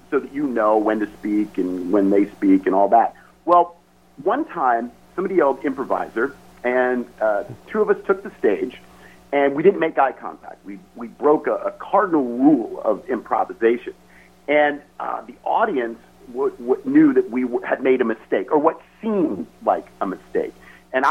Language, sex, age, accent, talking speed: English, male, 50-69, American, 180 wpm